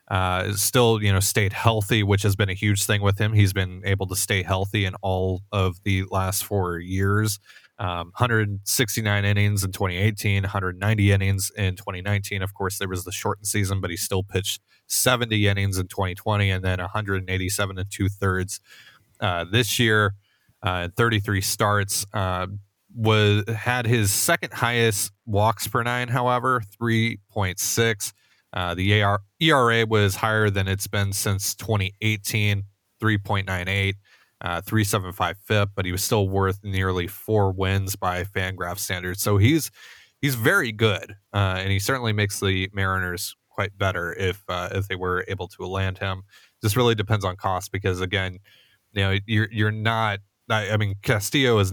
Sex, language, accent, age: male, English, American, 30-49